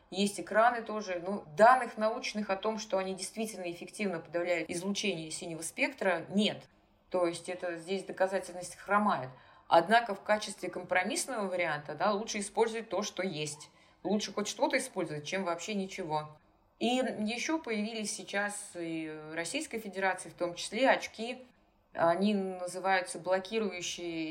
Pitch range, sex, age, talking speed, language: 170-215 Hz, female, 20-39, 135 wpm, Russian